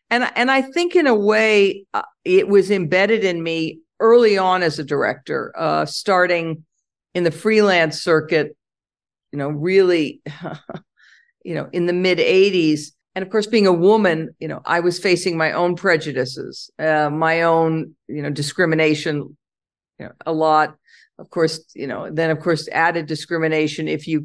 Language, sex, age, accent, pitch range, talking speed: English, female, 50-69, American, 160-200 Hz, 170 wpm